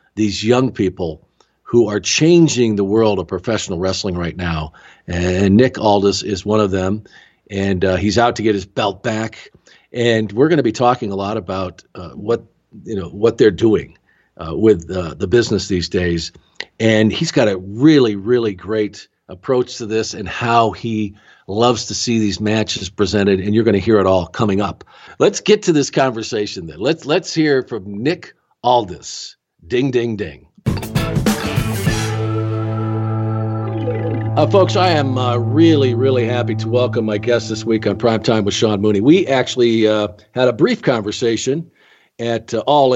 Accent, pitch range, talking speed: American, 100-120 Hz, 175 wpm